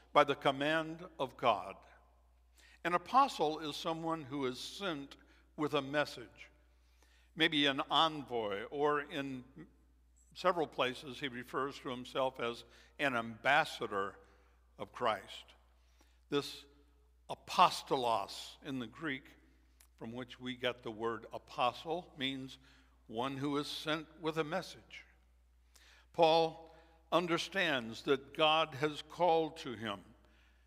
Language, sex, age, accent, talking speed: English, male, 60-79, American, 115 wpm